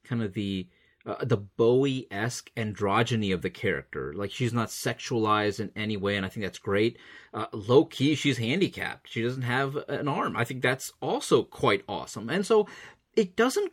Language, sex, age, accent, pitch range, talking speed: English, male, 30-49, American, 110-180 Hz, 180 wpm